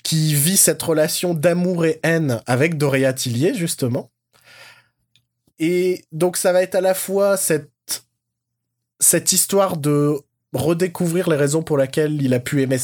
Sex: male